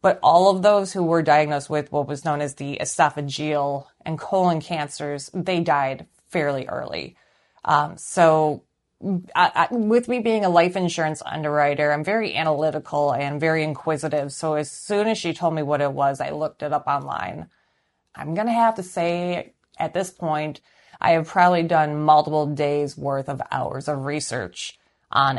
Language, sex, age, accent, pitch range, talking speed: English, female, 30-49, American, 145-170 Hz, 170 wpm